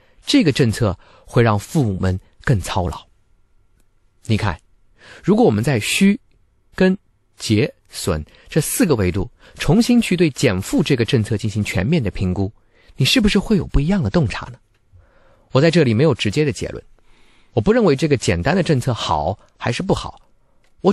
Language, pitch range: Chinese, 100-155 Hz